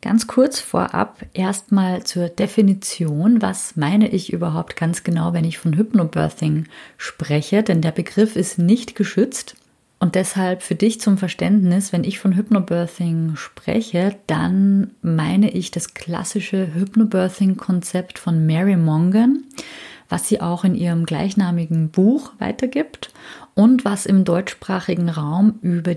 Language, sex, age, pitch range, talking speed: German, female, 30-49, 170-215 Hz, 130 wpm